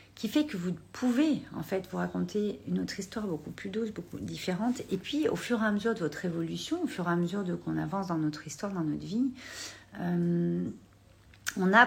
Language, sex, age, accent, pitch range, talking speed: French, female, 40-59, French, 160-210 Hz, 225 wpm